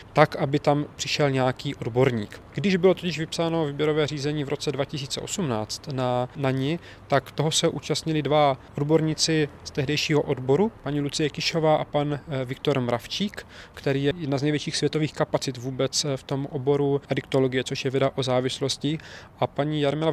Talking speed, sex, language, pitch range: 160 wpm, male, Czech, 135-145 Hz